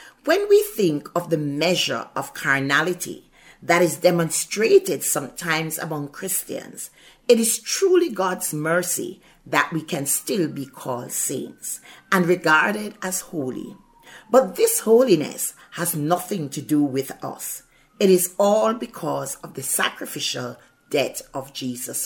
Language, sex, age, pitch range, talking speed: English, female, 40-59, 150-225 Hz, 135 wpm